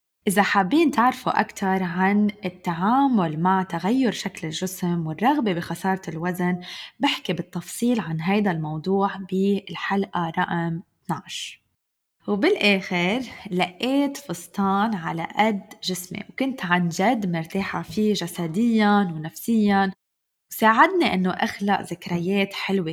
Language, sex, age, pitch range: Arabic, female, 20-39, 175-210 Hz